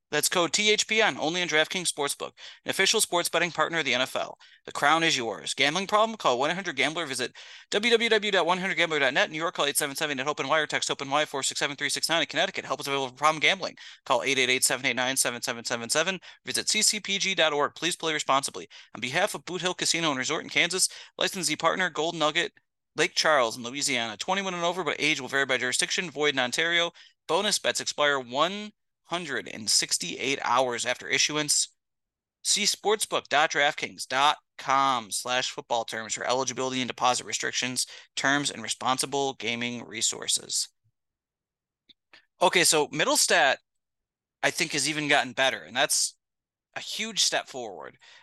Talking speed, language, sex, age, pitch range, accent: 150 wpm, English, male, 30-49, 125-170 Hz, American